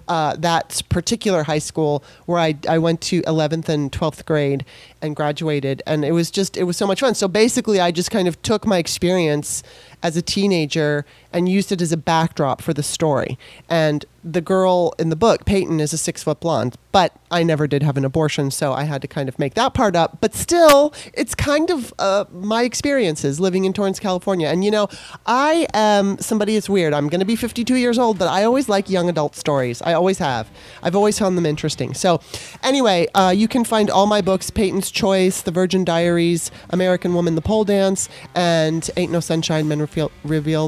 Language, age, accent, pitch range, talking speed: English, 30-49, American, 155-200 Hz, 210 wpm